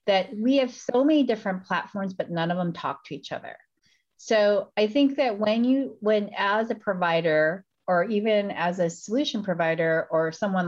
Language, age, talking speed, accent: English, 40-59, 185 wpm, American